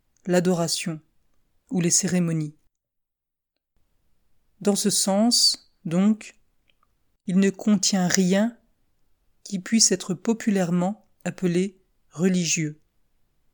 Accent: French